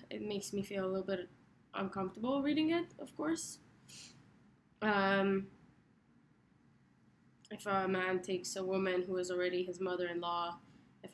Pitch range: 185-220 Hz